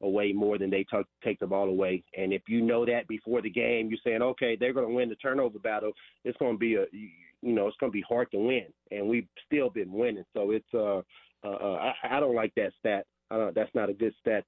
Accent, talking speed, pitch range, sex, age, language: American, 245 wpm, 100-120 Hz, male, 30-49, English